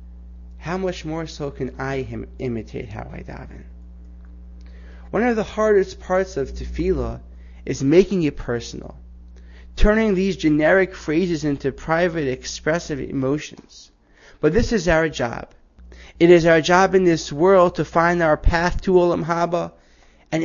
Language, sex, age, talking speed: English, male, 30-49, 145 wpm